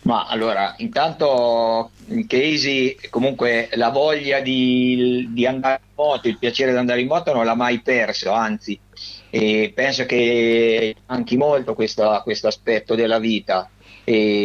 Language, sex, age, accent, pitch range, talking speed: Italian, male, 50-69, native, 115-130 Hz, 140 wpm